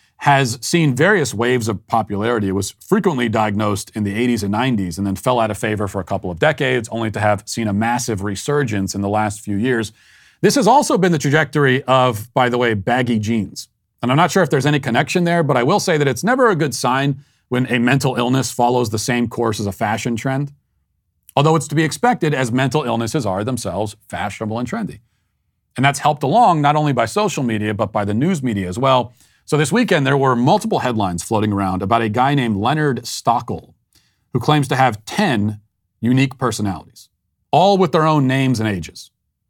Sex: male